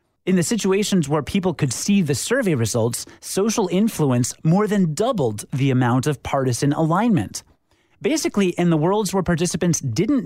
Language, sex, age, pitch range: English, male, 30-49, 145-200 Hz